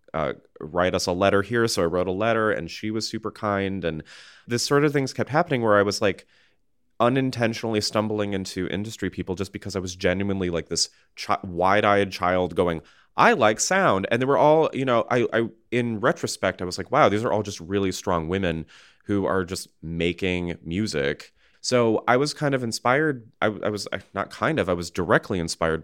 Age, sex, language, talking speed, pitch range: 30-49, male, English, 205 wpm, 90-115 Hz